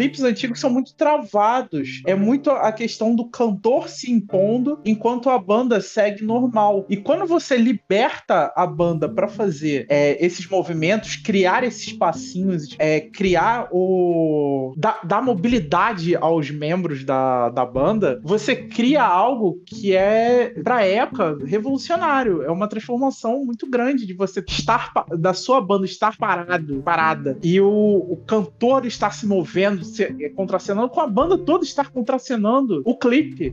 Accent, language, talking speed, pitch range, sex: Brazilian, Portuguese, 145 wpm, 175-245 Hz, male